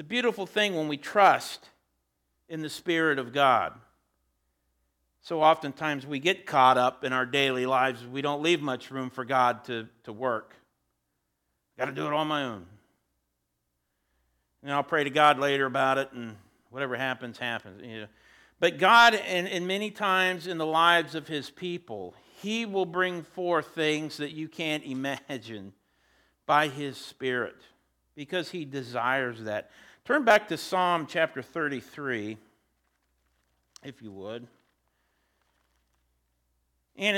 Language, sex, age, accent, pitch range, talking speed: English, male, 50-69, American, 115-170 Hz, 145 wpm